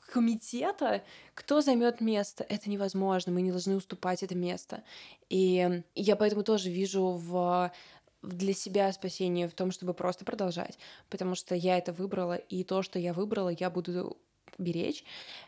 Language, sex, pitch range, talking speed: Russian, female, 180-205 Hz, 150 wpm